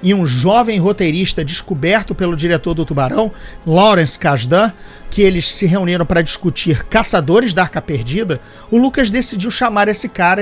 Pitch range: 175-225 Hz